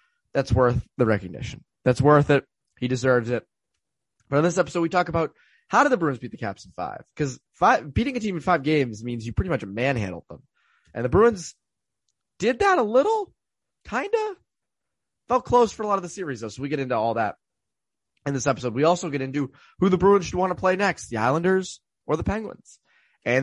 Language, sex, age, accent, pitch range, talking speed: English, male, 20-39, American, 115-175 Hz, 215 wpm